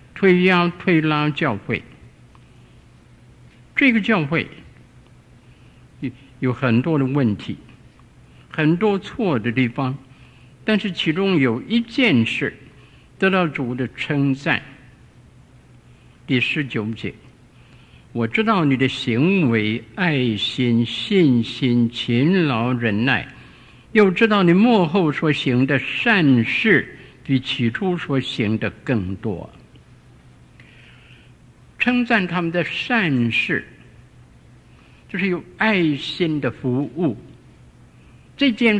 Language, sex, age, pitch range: Chinese, male, 60-79, 125-180 Hz